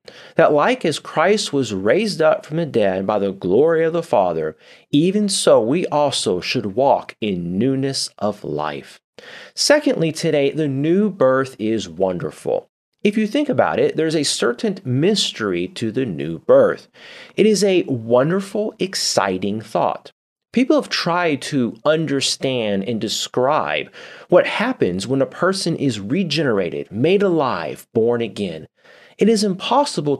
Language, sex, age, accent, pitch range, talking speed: English, male, 30-49, American, 120-195 Hz, 145 wpm